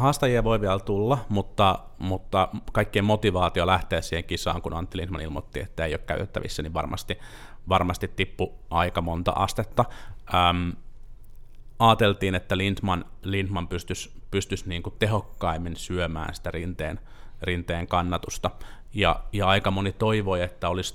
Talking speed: 130 wpm